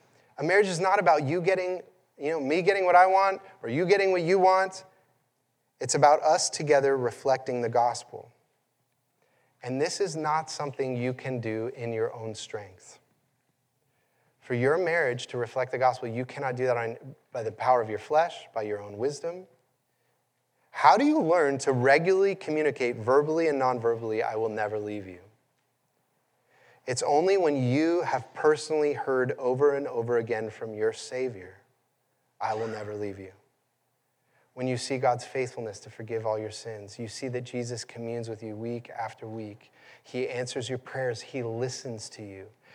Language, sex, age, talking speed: English, male, 30-49, 170 wpm